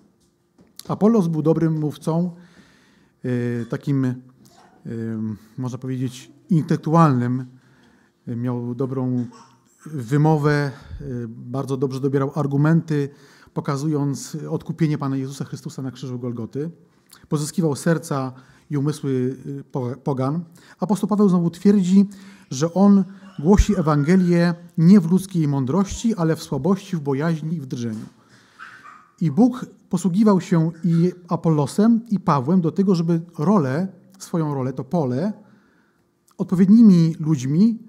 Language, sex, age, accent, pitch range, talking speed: Polish, male, 30-49, native, 135-185 Hz, 105 wpm